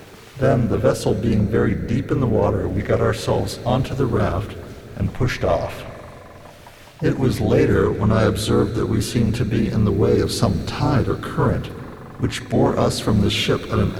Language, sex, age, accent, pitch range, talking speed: English, male, 60-79, American, 105-125 Hz, 195 wpm